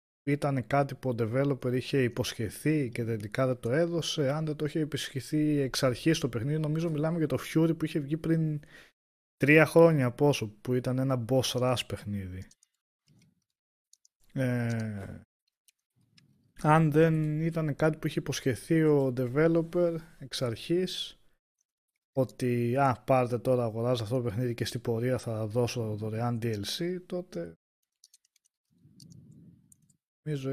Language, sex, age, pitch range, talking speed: Greek, male, 20-39, 110-145 Hz, 135 wpm